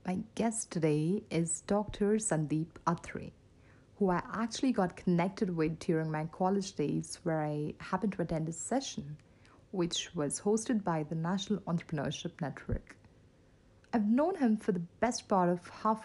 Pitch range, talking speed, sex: 160-210 Hz, 155 wpm, female